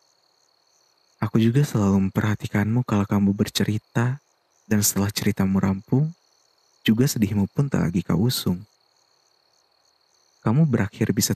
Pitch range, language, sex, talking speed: 100-115 Hz, Indonesian, male, 110 wpm